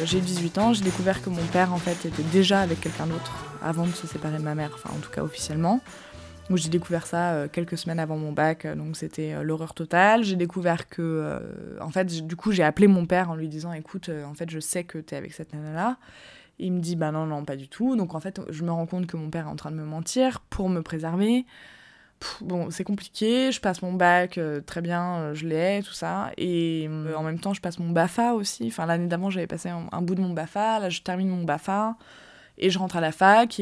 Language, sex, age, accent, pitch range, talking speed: French, female, 20-39, French, 160-185 Hz, 250 wpm